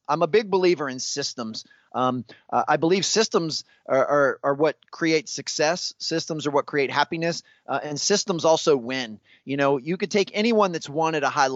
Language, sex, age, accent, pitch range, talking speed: English, male, 30-49, American, 135-175 Hz, 195 wpm